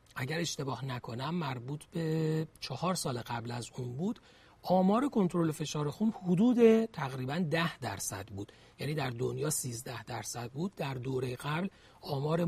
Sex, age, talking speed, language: male, 40-59, 145 wpm, Persian